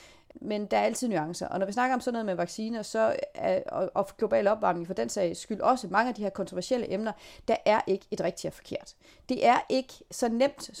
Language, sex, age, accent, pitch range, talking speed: Danish, female, 30-49, native, 185-245 Hz, 235 wpm